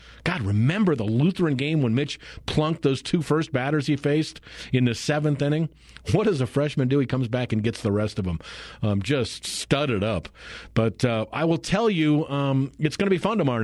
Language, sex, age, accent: English, male, 50-69, American